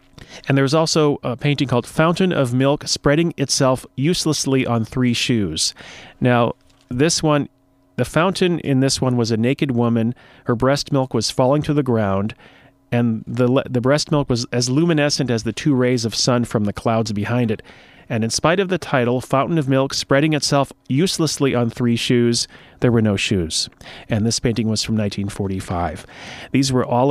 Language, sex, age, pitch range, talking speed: English, male, 40-59, 110-145 Hz, 180 wpm